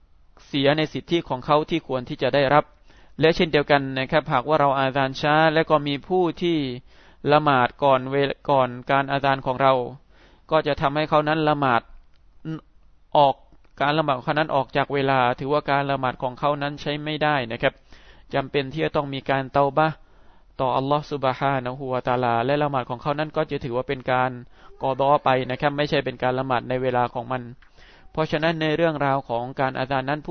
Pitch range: 125-150 Hz